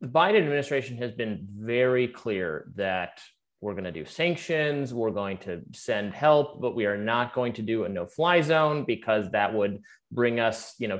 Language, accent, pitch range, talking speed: English, American, 110-145 Hz, 190 wpm